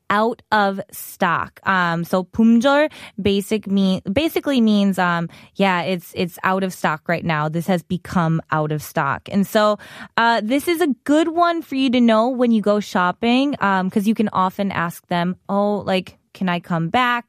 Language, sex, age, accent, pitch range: Korean, female, 20-39, American, 185-250 Hz